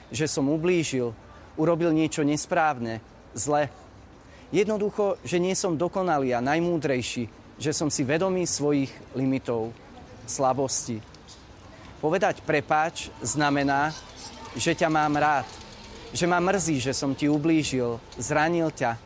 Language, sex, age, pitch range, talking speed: Slovak, male, 30-49, 120-165 Hz, 115 wpm